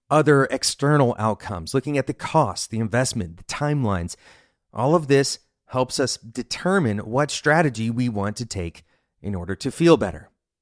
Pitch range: 100-135 Hz